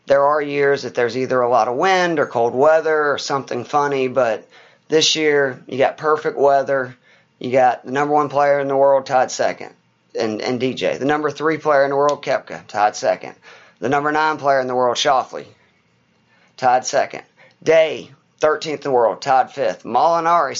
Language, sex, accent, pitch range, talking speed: English, male, American, 130-150 Hz, 190 wpm